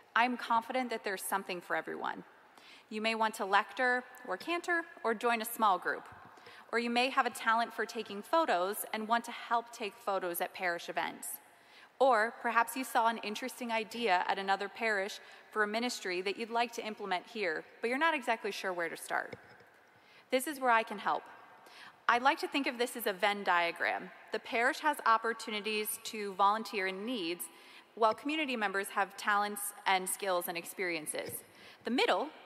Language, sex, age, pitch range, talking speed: English, female, 20-39, 195-245 Hz, 185 wpm